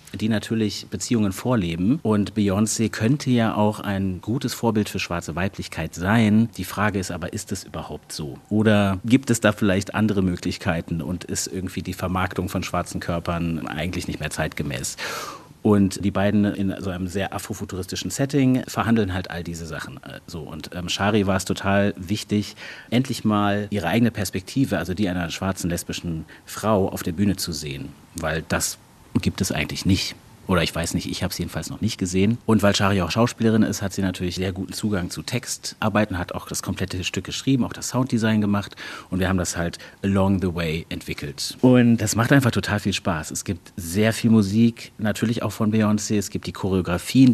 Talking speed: 190 wpm